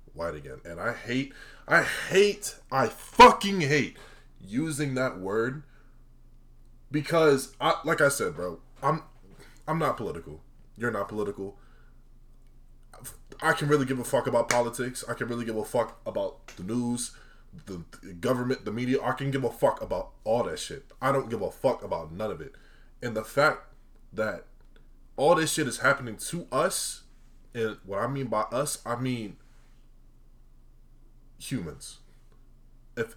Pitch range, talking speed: 100-130 Hz, 155 wpm